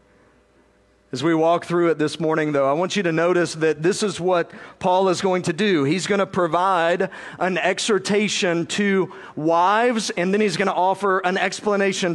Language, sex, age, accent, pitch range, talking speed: English, male, 50-69, American, 155-190 Hz, 190 wpm